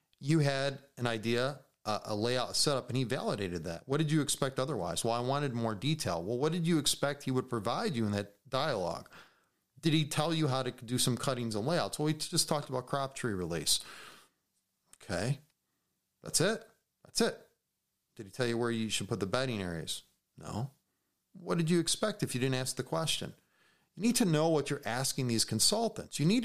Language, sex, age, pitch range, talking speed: English, male, 40-59, 120-165 Hz, 210 wpm